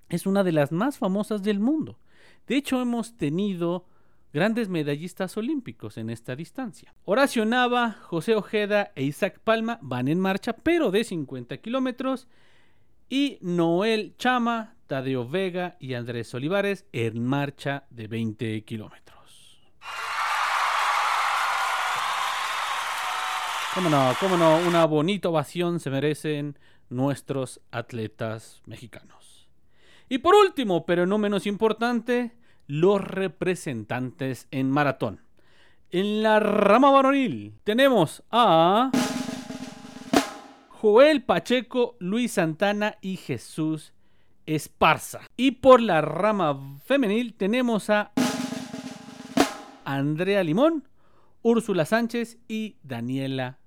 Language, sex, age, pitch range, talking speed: Spanish, male, 40-59, 145-235 Hz, 105 wpm